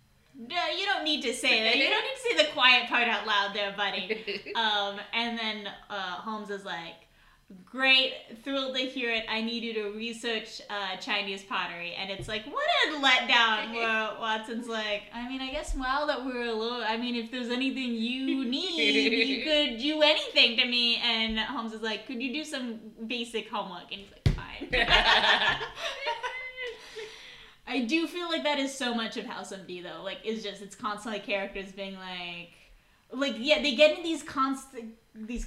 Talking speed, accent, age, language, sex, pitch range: 190 wpm, American, 10-29, English, female, 215-270 Hz